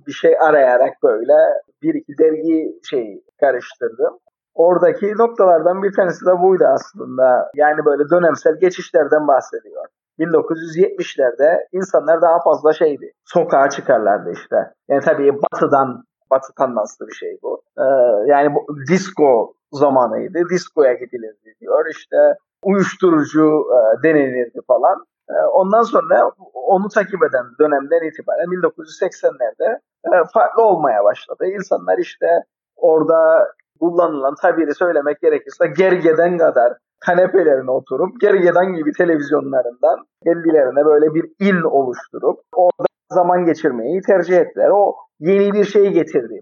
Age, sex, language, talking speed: 50-69, male, Turkish, 110 wpm